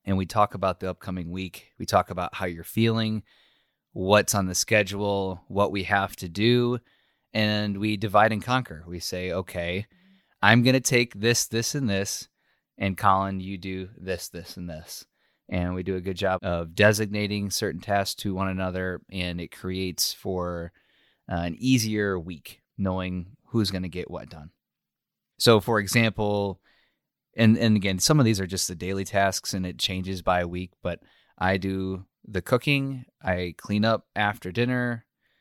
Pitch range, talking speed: 90-105 Hz, 170 wpm